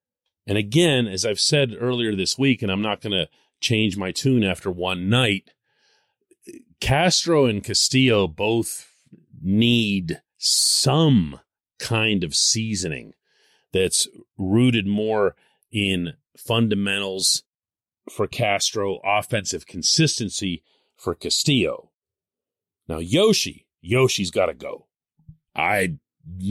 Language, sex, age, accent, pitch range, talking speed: English, male, 40-59, American, 95-130 Hz, 105 wpm